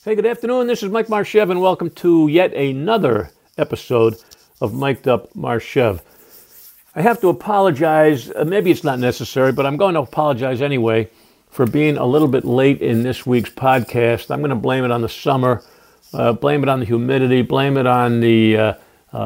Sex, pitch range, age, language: male, 120-155 Hz, 50-69, English